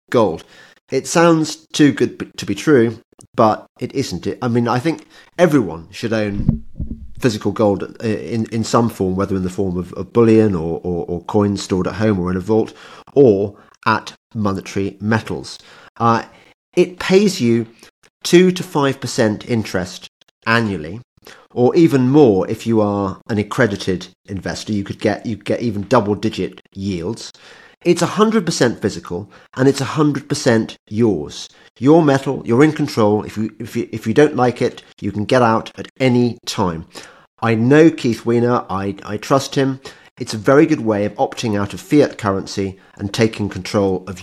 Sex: male